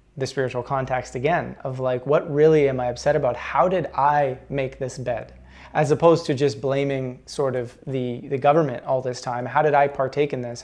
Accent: American